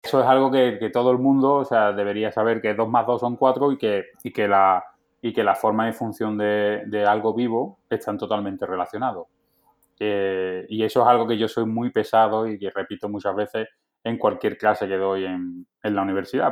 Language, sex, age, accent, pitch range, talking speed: Spanish, male, 20-39, Spanish, 100-120 Hz, 215 wpm